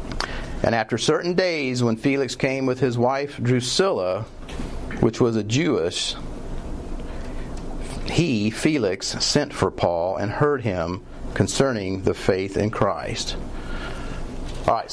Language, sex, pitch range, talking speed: English, male, 115-150 Hz, 120 wpm